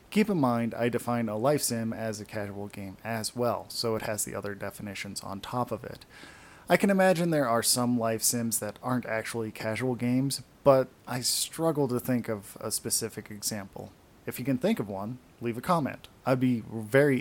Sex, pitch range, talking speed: male, 110-130 Hz, 200 wpm